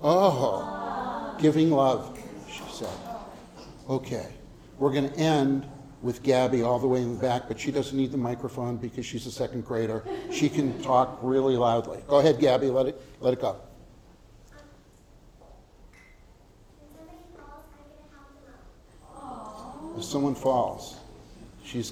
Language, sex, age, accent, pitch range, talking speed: English, male, 50-69, American, 115-140 Hz, 145 wpm